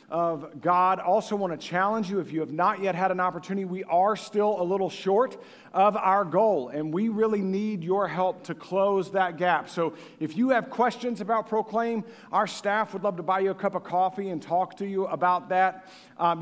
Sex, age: male, 50-69